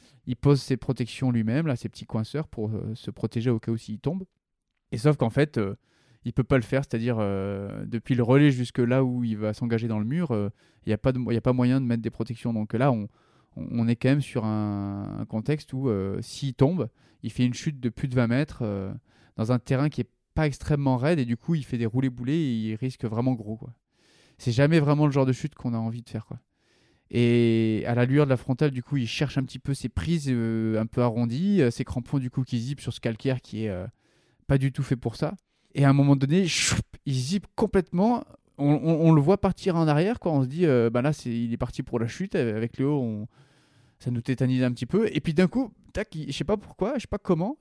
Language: French